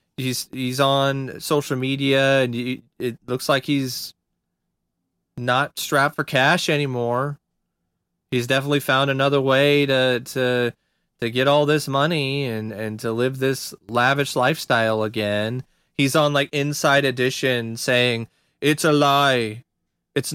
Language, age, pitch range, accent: English, 30-49, 125-170 Hz, American